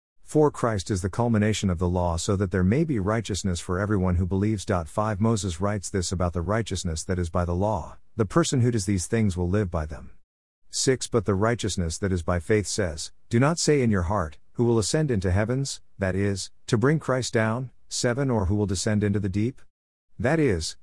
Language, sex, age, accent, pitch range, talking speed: English, male, 50-69, American, 90-115 Hz, 220 wpm